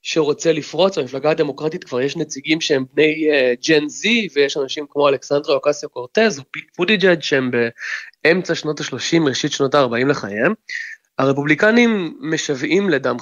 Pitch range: 130-170 Hz